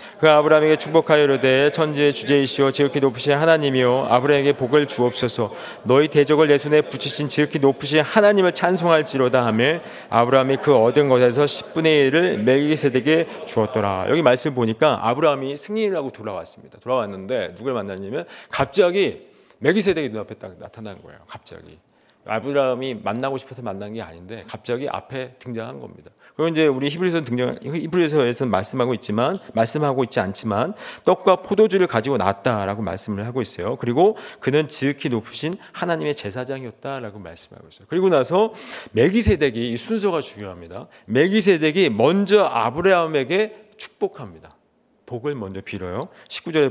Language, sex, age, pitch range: Korean, male, 40-59, 120-165 Hz